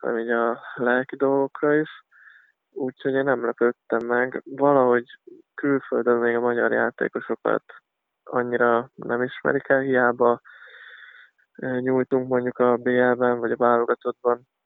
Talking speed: 120 wpm